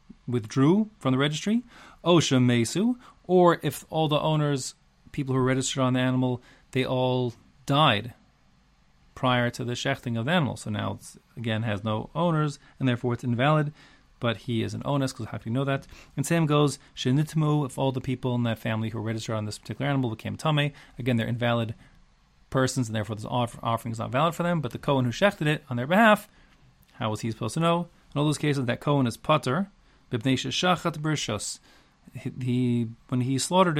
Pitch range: 115-150 Hz